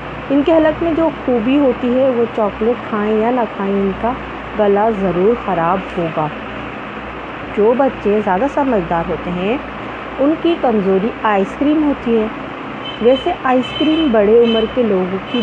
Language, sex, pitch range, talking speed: Urdu, female, 210-265 Hz, 160 wpm